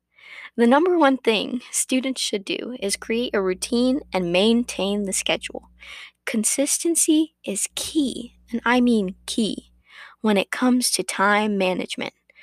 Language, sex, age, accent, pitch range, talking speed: English, female, 10-29, American, 185-245 Hz, 135 wpm